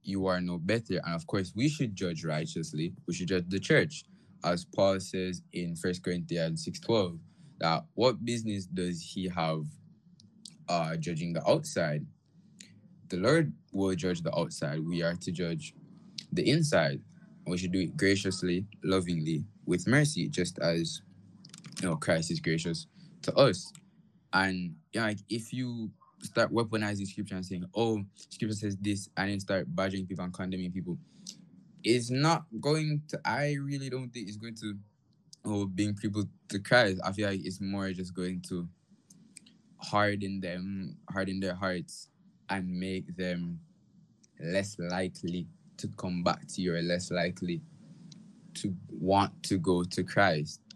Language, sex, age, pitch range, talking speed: English, male, 20-39, 90-120 Hz, 160 wpm